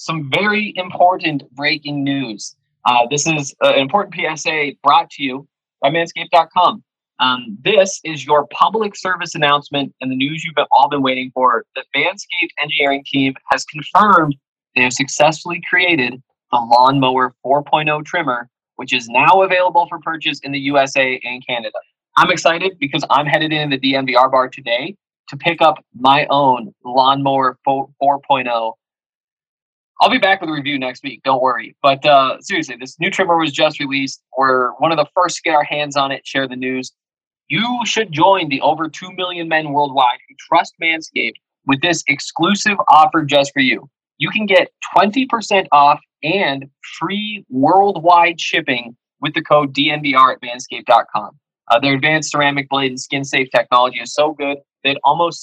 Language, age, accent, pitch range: English, 20-39, American, 135-170 Hz